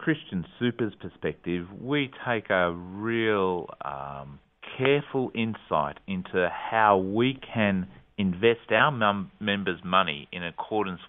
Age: 40-59